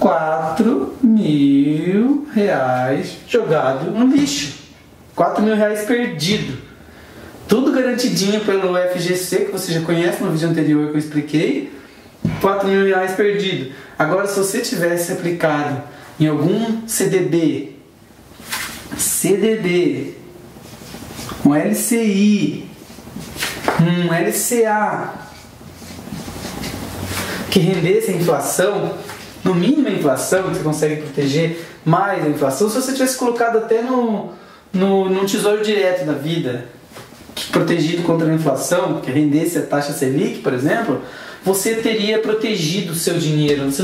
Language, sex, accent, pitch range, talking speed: English, male, Brazilian, 155-205 Hz, 120 wpm